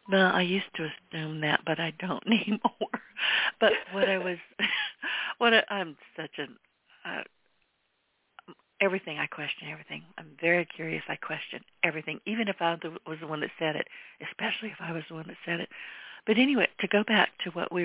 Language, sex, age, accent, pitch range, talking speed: English, female, 50-69, American, 160-200 Hz, 190 wpm